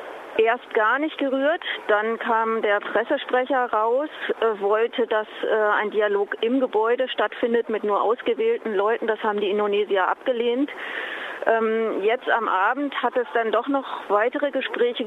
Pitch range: 215-260 Hz